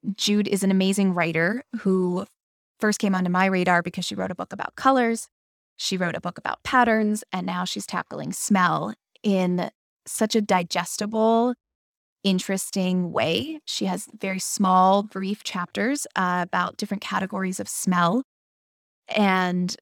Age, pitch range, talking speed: 20-39, 180-215 Hz, 145 wpm